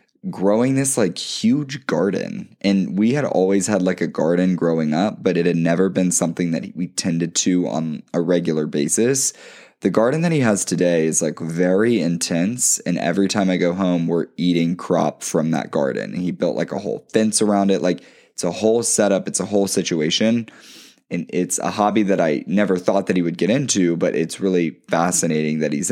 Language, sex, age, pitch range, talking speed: English, male, 10-29, 85-100 Hz, 200 wpm